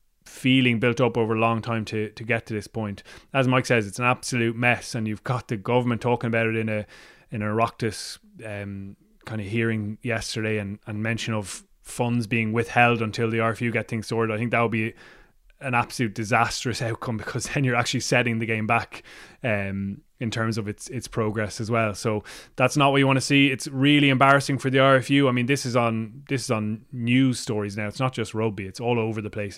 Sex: male